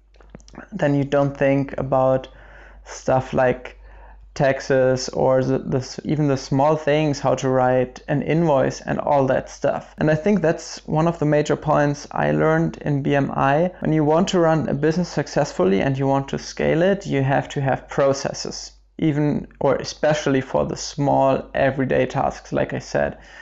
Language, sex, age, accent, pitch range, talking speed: English, male, 20-39, German, 135-160 Hz, 165 wpm